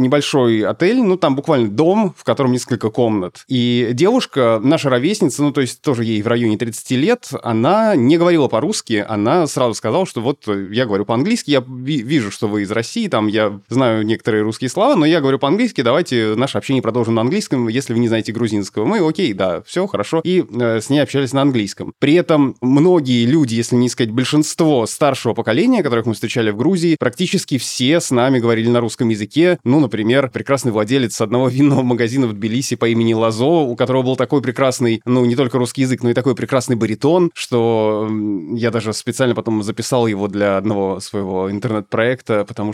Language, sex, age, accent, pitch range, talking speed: Russian, male, 20-39, native, 115-140 Hz, 190 wpm